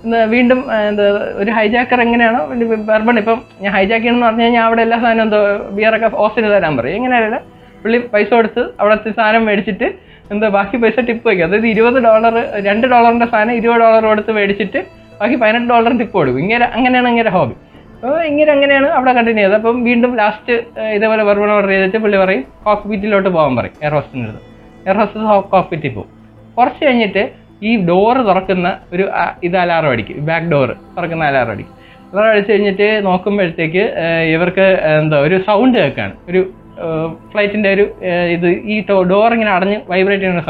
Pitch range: 185-230 Hz